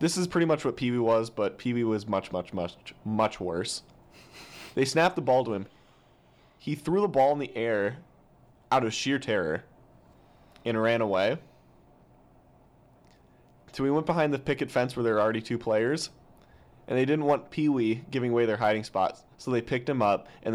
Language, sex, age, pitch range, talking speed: English, male, 20-39, 110-145 Hz, 190 wpm